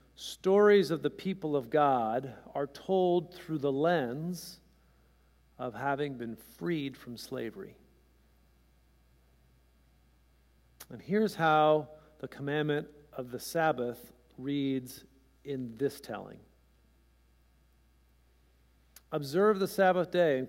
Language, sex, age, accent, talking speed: English, male, 50-69, American, 100 wpm